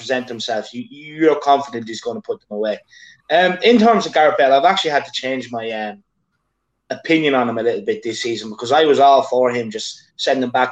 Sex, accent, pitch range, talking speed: male, British, 130-205 Hz, 230 wpm